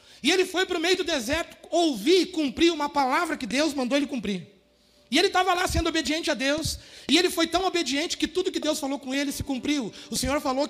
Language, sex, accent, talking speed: Portuguese, male, Brazilian, 240 wpm